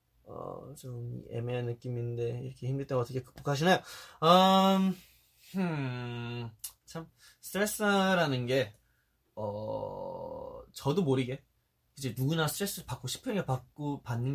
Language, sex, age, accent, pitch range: Korean, male, 20-39, native, 115-160 Hz